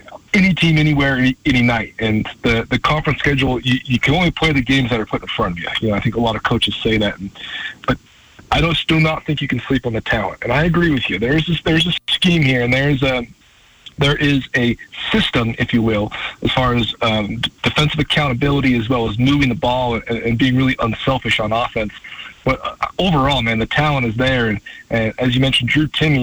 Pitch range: 120-155 Hz